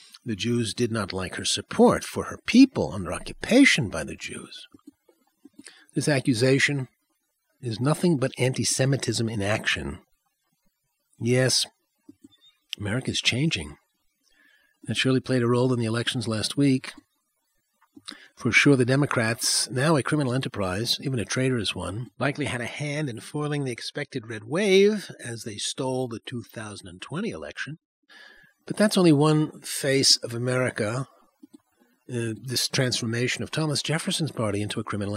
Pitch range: 115-165 Hz